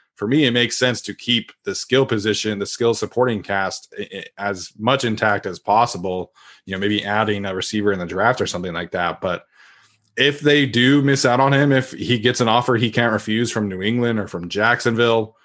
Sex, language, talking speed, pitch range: male, English, 210 wpm, 105-120 Hz